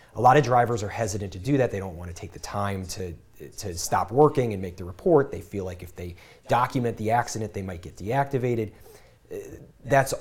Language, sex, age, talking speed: English, male, 30-49, 215 wpm